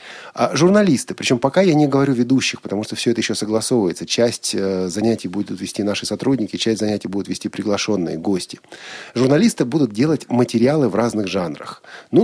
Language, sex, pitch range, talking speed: Russian, male, 105-145 Hz, 170 wpm